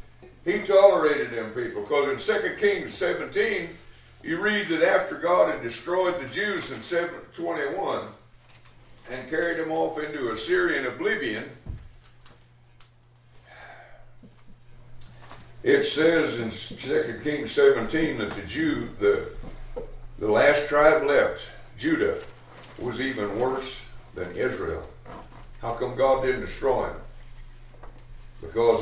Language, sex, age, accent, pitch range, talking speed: English, male, 60-79, American, 115-170 Hz, 110 wpm